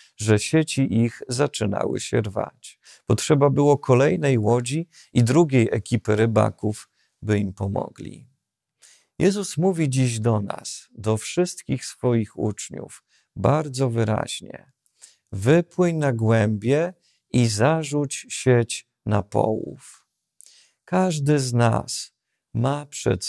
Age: 50-69